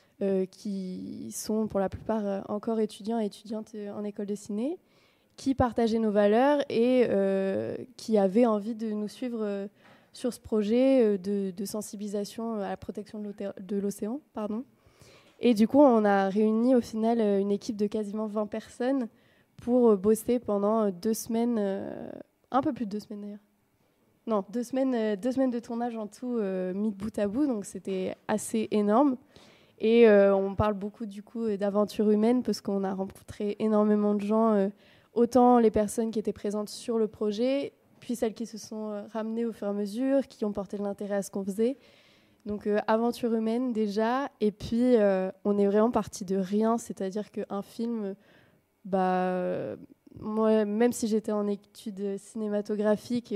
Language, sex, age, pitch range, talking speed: French, female, 20-39, 205-230 Hz, 180 wpm